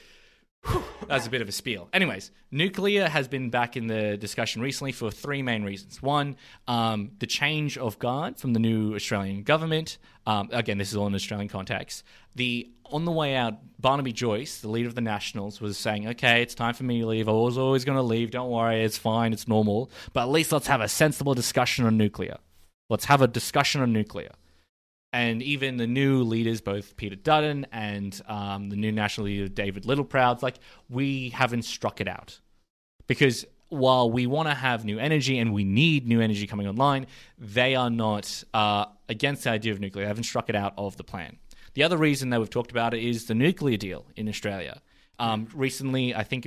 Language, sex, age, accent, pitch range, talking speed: English, male, 20-39, Australian, 105-130 Hz, 205 wpm